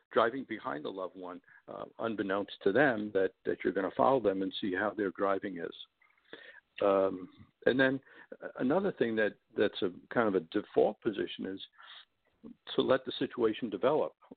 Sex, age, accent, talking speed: male, 60-79, American, 170 wpm